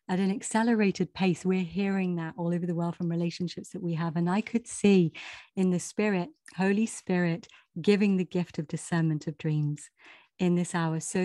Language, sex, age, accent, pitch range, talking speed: English, female, 40-59, British, 165-190 Hz, 190 wpm